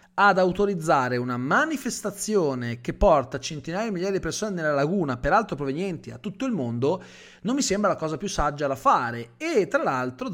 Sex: male